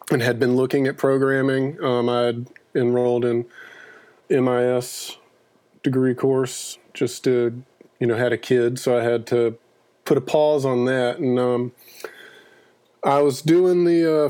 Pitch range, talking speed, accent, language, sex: 120-140 Hz, 155 wpm, American, English, male